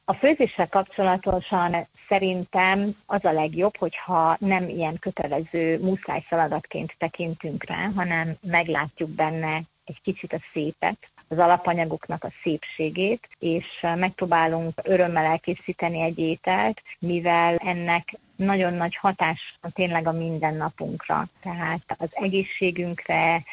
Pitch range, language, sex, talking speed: 160-185 Hz, Hungarian, female, 110 wpm